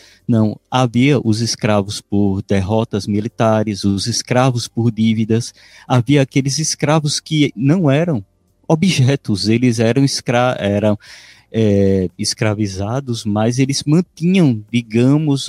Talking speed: 100 wpm